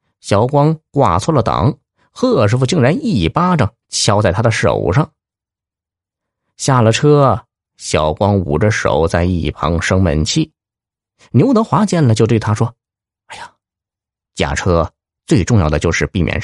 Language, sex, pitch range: Chinese, male, 90-125 Hz